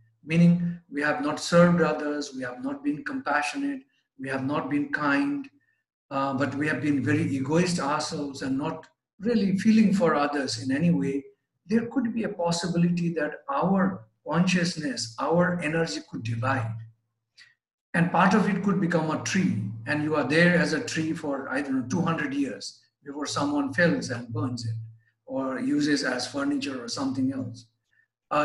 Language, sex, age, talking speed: English, male, 50-69, 170 wpm